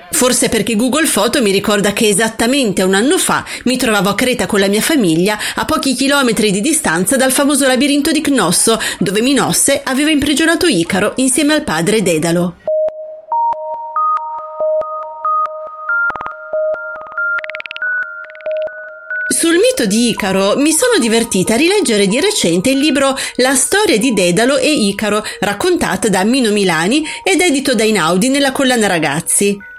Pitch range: 195-310 Hz